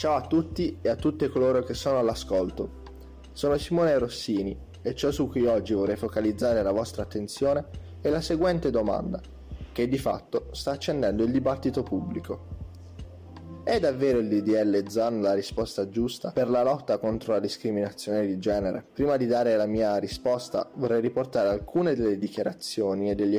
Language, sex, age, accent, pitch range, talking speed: Italian, male, 20-39, native, 105-140 Hz, 165 wpm